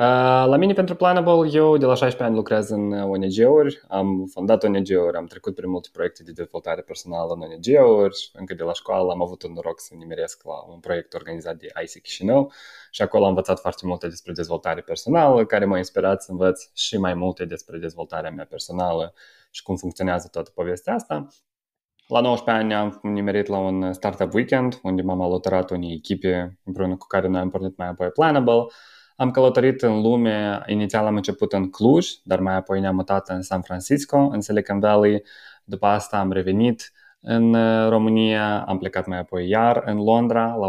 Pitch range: 95-115 Hz